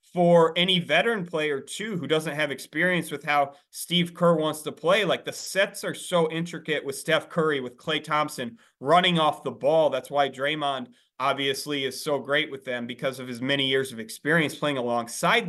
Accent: American